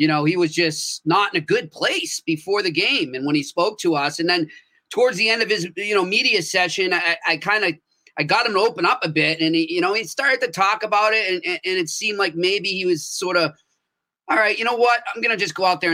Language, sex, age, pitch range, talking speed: English, male, 30-49, 155-205 Hz, 280 wpm